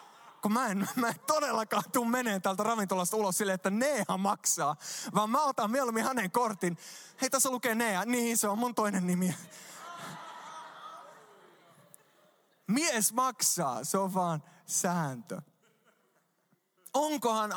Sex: male